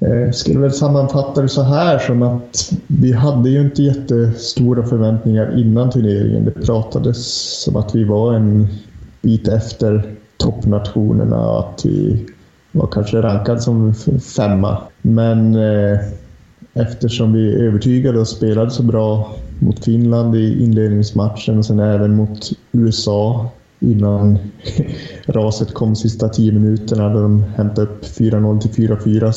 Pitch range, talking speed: 105-120 Hz, 135 wpm